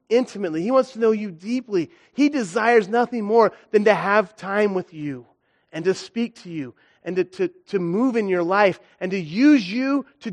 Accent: American